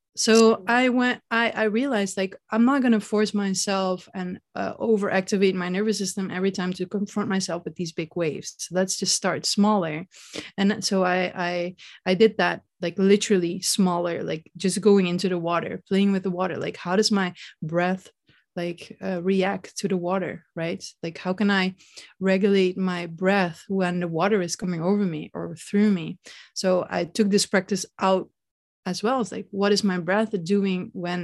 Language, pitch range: English, 180-210 Hz